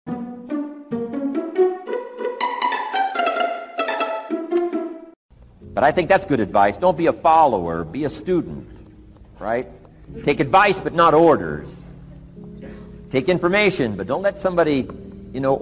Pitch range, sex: 120-195 Hz, male